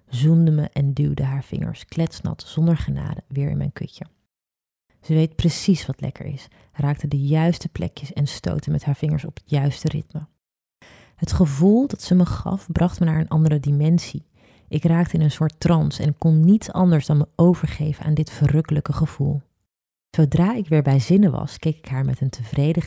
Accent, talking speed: Dutch, 190 wpm